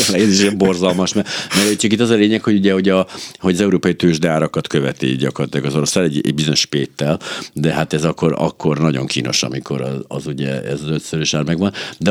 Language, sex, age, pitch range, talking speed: Hungarian, male, 60-79, 75-90 Hz, 225 wpm